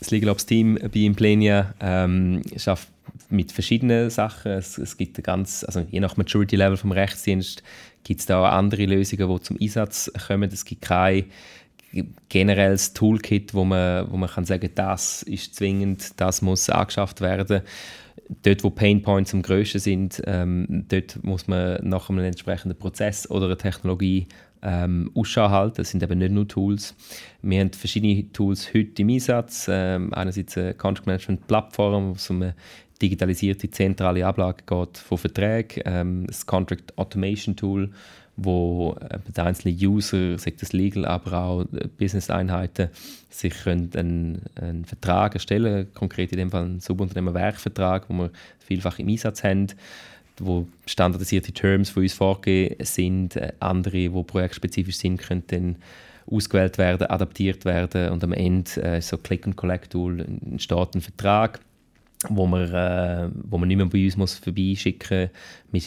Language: German